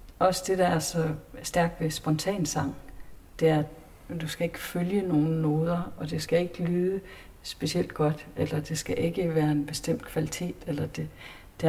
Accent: native